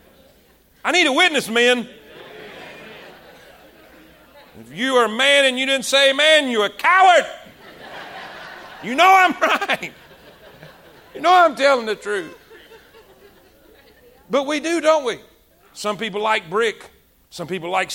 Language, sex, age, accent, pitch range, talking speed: English, male, 40-59, American, 210-295 Hz, 135 wpm